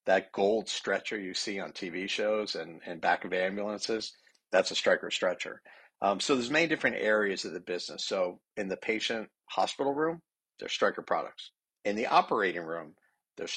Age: 50-69